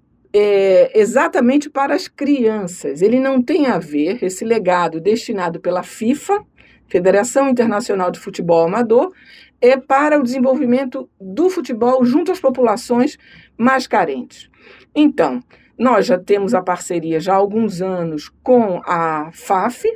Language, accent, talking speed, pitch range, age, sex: Portuguese, Brazilian, 130 wpm, 190-260 Hz, 50-69, female